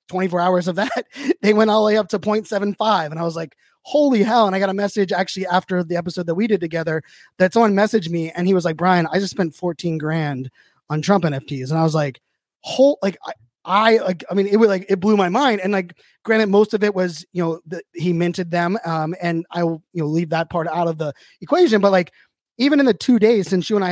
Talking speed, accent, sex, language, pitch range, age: 260 wpm, American, male, English, 170-205 Hz, 20-39